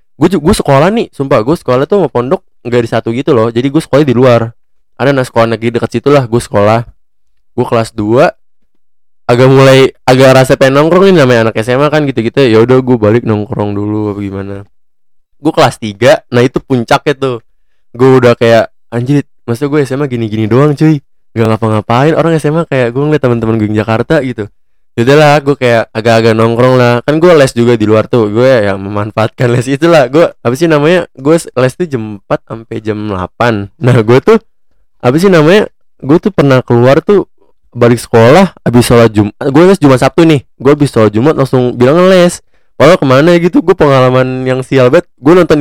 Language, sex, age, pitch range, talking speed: Indonesian, male, 20-39, 115-145 Hz, 200 wpm